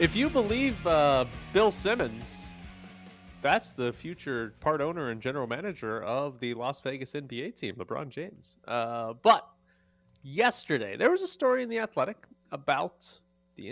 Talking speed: 150 wpm